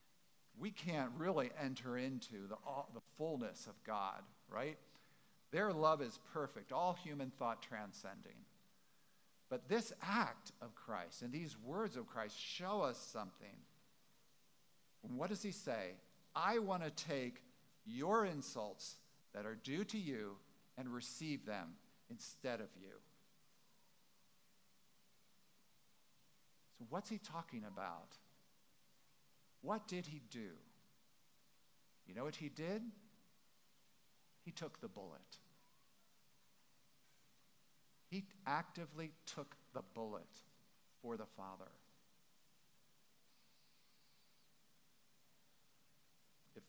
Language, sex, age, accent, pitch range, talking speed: English, male, 50-69, American, 125-185 Hz, 105 wpm